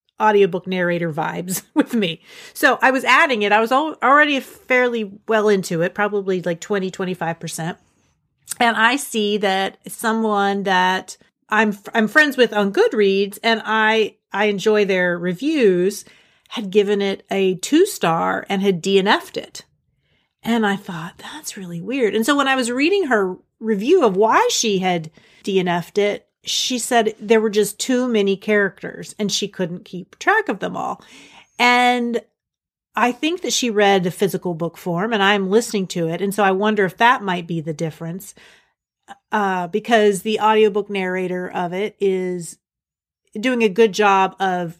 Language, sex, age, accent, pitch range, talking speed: English, female, 40-59, American, 185-230 Hz, 165 wpm